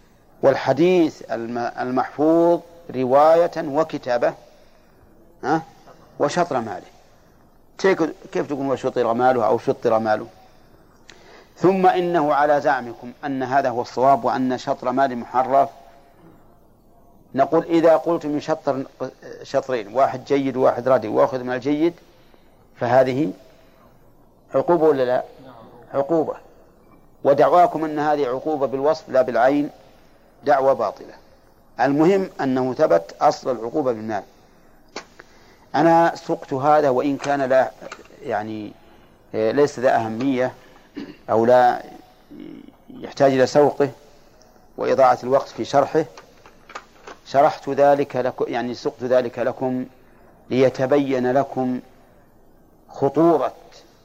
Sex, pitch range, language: male, 125-150 Hz, Arabic